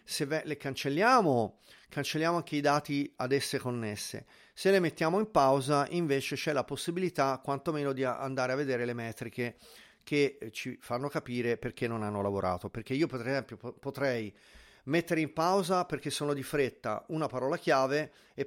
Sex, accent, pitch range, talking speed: male, native, 120-155 Hz, 160 wpm